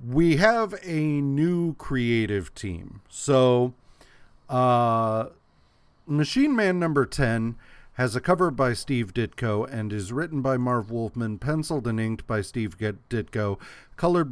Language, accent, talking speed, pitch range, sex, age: English, American, 130 wpm, 110-145 Hz, male, 40-59